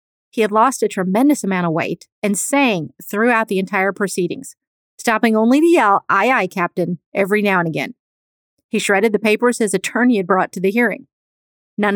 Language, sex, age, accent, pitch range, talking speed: English, female, 40-59, American, 180-225 Hz, 185 wpm